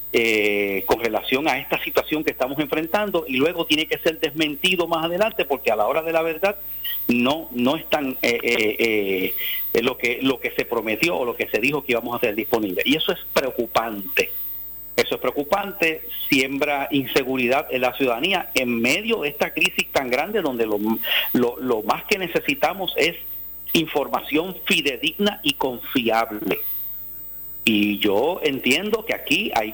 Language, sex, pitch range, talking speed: Spanish, male, 125-180 Hz, 170 wpm